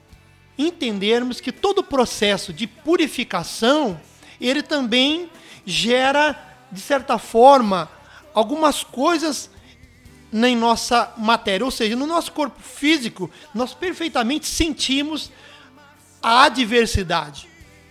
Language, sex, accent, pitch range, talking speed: Portuguese, male, Brazilian, 225-300 Hz, 95 wpm